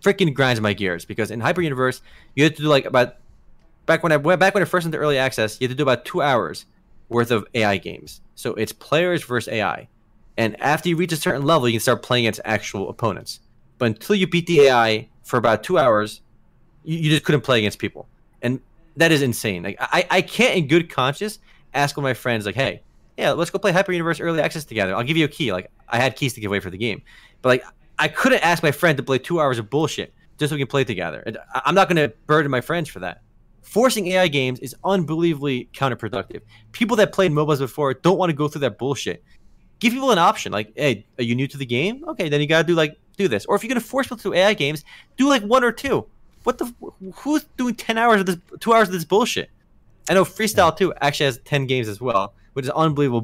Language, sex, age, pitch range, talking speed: English, male, 20-39, 120-180 Hz, 245 wpm